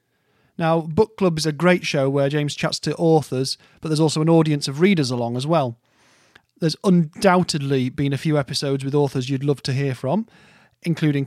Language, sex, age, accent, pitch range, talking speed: English, male, 30-49, British, 135-170 Hz, 190 wpm